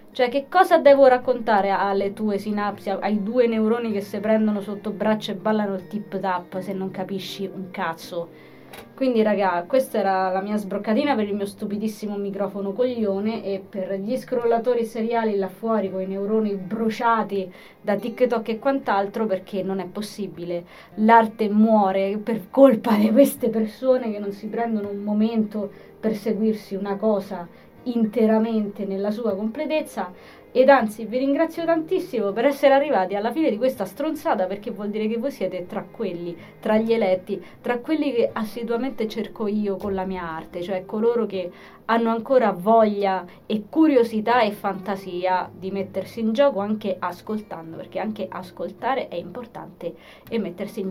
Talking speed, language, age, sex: 160 wpm, Italian, 20-39, female